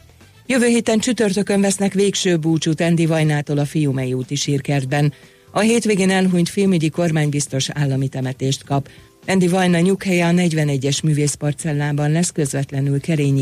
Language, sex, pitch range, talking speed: Hungarian, female, 140-175 Hz, 130 wpm